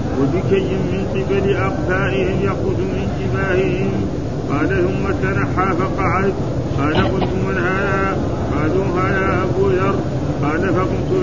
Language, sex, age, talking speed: Arabic, male, 50-69, 110 wpm